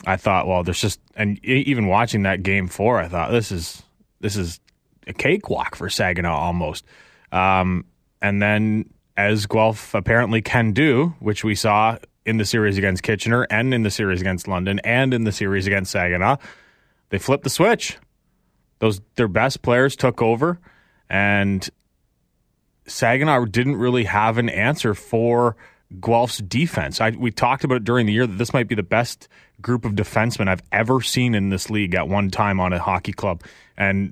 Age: 20-39